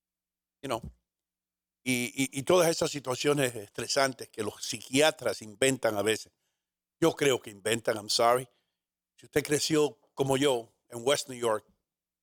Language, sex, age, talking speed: English, male, 60-79, 135 wpm